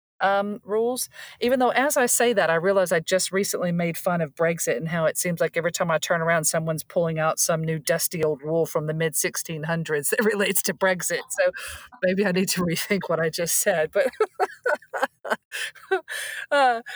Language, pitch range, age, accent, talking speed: English, 160-205 Hz, 40-59, American, 200 wpm